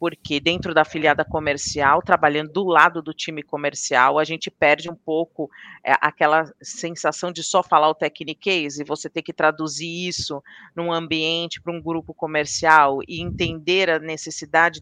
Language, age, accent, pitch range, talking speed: Portuguese, 40-59, Brazilian, 145-170 Hz, 160 wpm